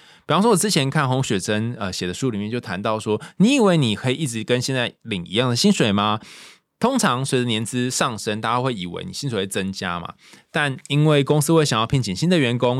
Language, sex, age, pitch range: Chinese, male, 20-39, 105-150 Hz